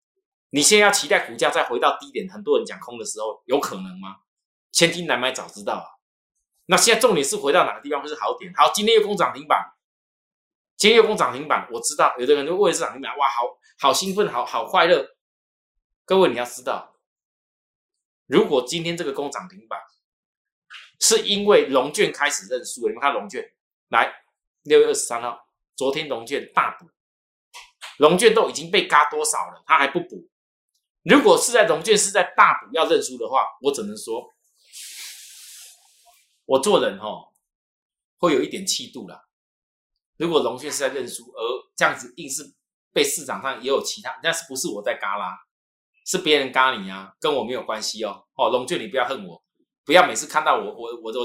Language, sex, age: Chinese, male, 20-39